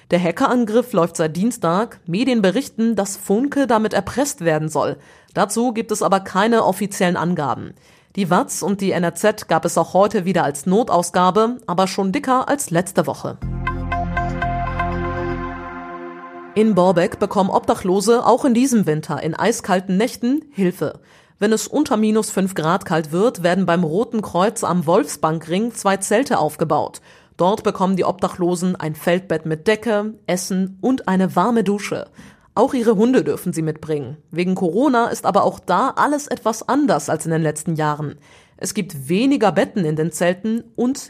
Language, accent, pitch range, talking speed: German, German, 165-220 Hz, 160 wpm